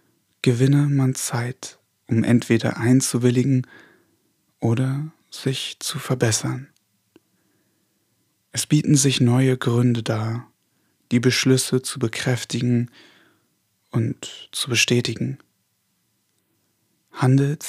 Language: German